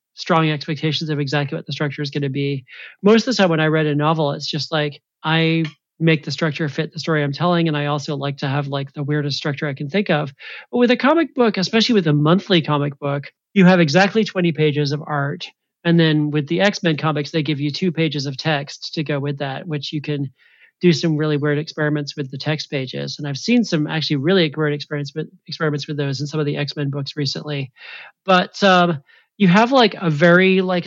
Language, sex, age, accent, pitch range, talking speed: English, male, 40-59, American, 150-180 Hz, 230 wpm